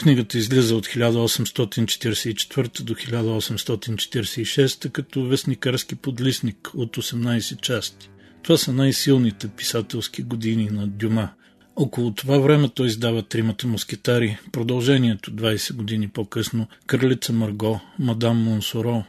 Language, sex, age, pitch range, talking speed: Bulgarian, male, 40-59, 110-130 Hz, 105 wpm